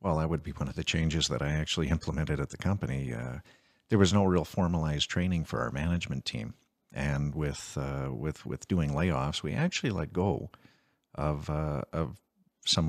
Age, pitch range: 50-69, 75-90 Hz